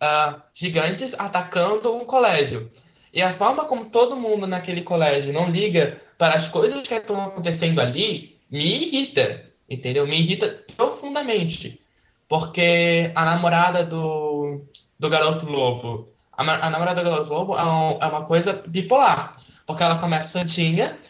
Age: 20-39